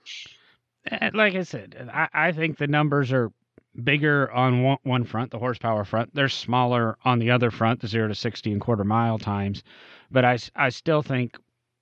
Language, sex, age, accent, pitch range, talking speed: English, male, 30-49, American, 110-135 Hz, 185 wpm